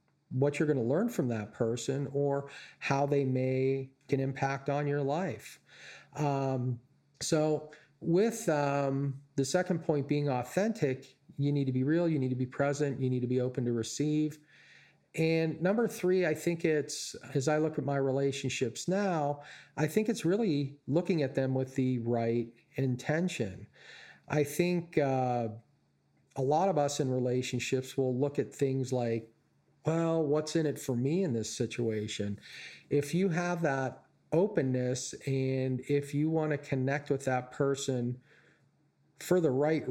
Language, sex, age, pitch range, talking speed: English, male, 40-59, 130-155 Hz, 160 wpm